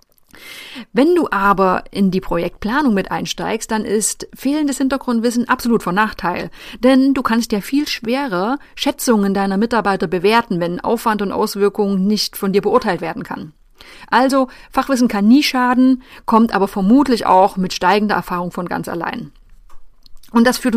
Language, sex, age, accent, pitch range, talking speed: German, female, 30-49, German, 200-255 Hz, 155 wpm